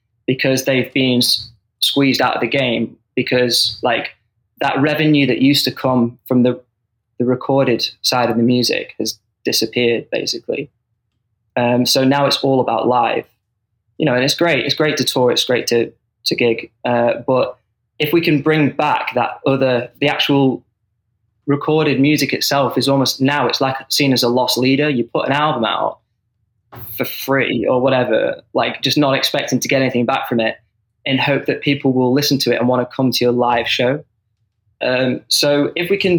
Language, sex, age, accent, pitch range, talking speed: English, male, 10-29, British, 115-140 Hz, 185 wpm